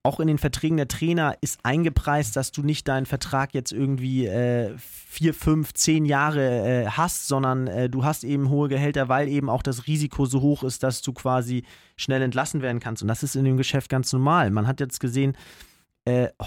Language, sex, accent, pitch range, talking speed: German, male, German, 130-155 Hz, 205 wpm